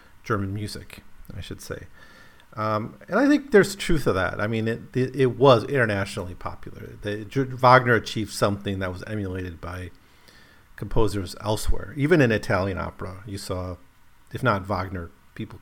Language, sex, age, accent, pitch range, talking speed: English, male, 40-59, American, 95-115 Hz, 160 wpm